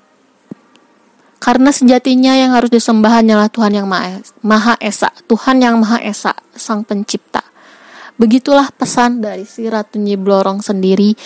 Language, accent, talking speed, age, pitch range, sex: Indonesian, native, 125 wpm, 20-39, 210-260 Hz, female